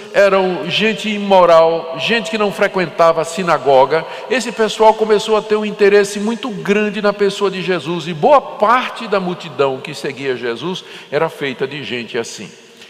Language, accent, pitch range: Portuguese, Brazilian, 165-225 Hz